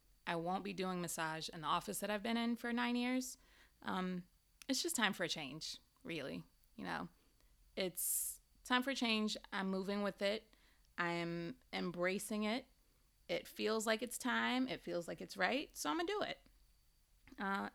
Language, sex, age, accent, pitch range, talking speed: English, female, 20-39, American, 180-255 Hz, 185 wpm